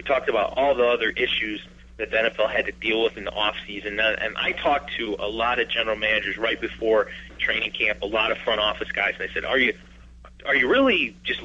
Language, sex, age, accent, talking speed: English, male, 30-49, American, 230 wpm